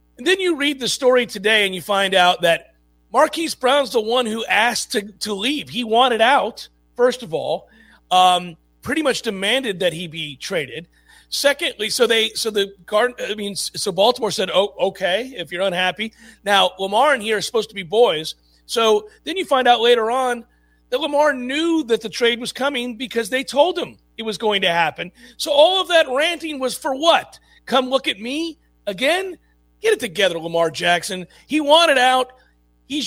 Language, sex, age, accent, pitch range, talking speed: English, male, 40-59, American, 195-275 Hz, 190 wpm